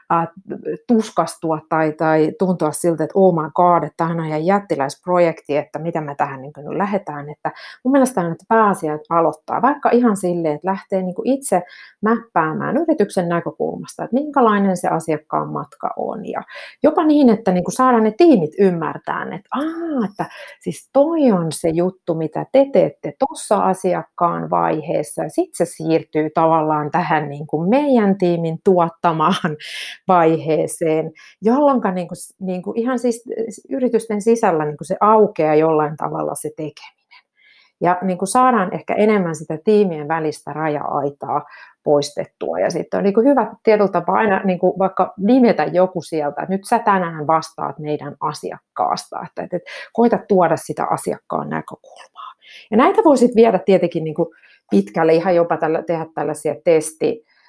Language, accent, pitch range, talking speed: Finnish, native, 160-220 Hz, 150 wpm